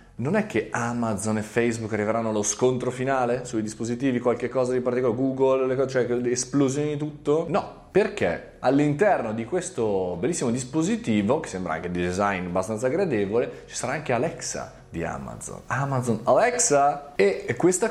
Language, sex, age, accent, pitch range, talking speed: Italian, male, 30-49, native, 100-140 Hz, 150 wpm